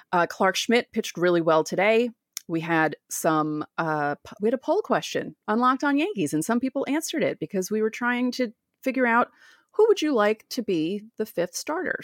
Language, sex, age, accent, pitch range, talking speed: English, female, 30-49, American, 175-255 Hz, 190 wpm